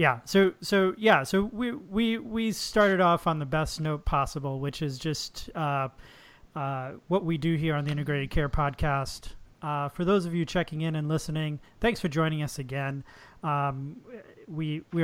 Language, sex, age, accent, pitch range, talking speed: English, male, 30-49, American, 145-170 Hz, 185 wpm